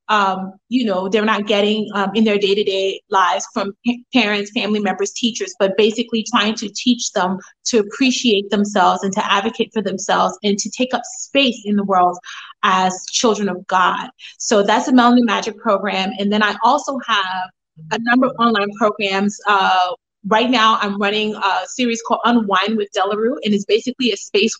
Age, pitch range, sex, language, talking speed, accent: 30-49, 200-235 Hz, female, English, 185 wpm, American